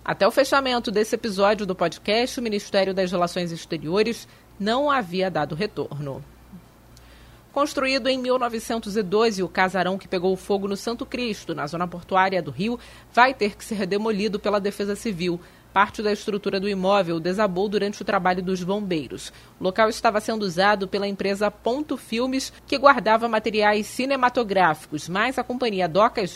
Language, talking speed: Portuguese, 155 wpm